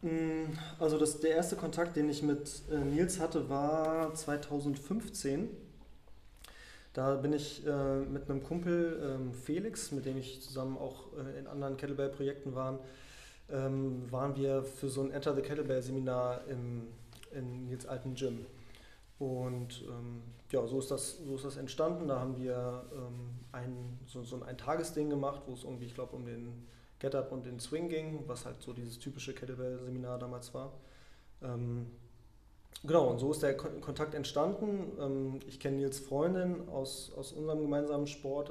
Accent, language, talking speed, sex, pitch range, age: German, German, 160 wpm, male, 125-145 Hz, 20-39